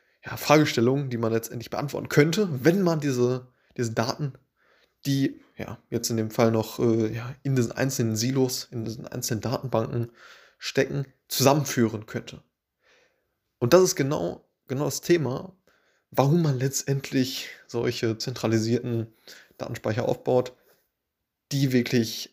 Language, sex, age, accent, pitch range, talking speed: German, male, 20-39, German, 115-140 Hz, 130 wpm